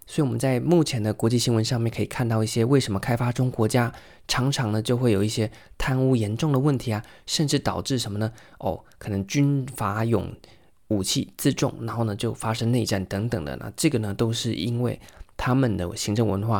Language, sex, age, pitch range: Chinese, male, 20-39, 105-130 Hz